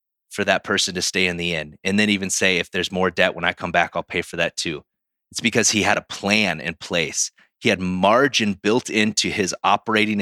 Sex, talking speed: male, 235 wpm